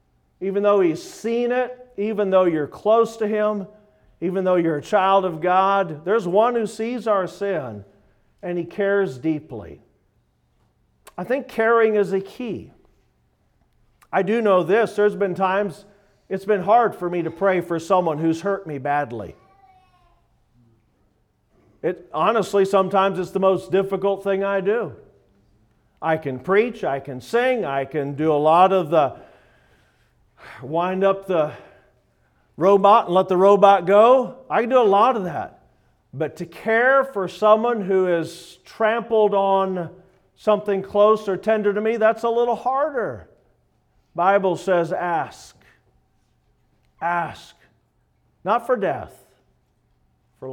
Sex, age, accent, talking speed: male, 50-69, American, 145 wpm